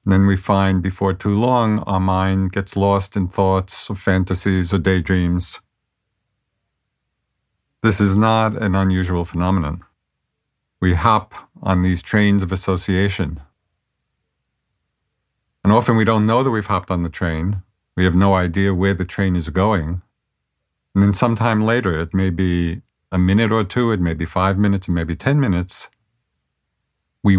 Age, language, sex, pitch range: 50-69, English, male, 90-105 Hz